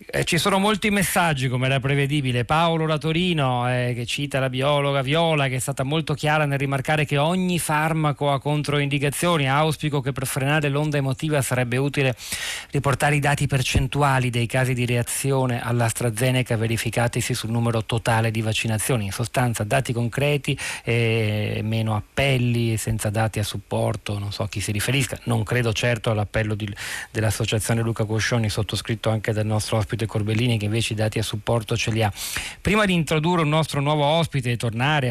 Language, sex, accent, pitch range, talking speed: Italian, male, native, 115-145 Hz, 170 wpm